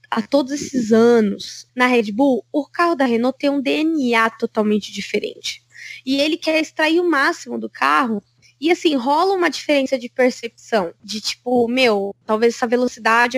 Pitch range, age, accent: 230-310 Hz, 20-39, Brazilian